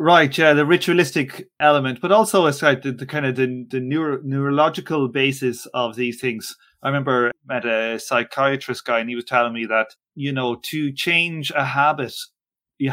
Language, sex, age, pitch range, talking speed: English, male, 30-49, 125-150 Hz, 175 wpm